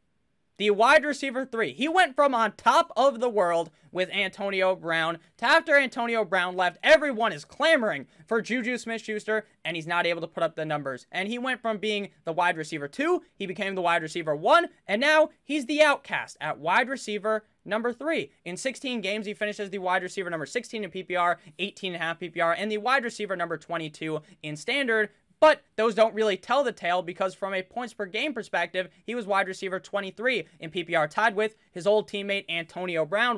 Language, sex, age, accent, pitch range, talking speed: English, male, 20-39, American, 165-225 Hz, 205 wpm